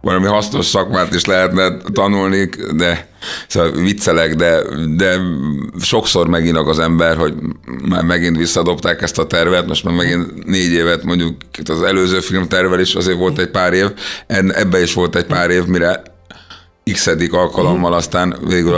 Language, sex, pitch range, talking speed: Hungarian, male, 85-95 Hz, 155 wpm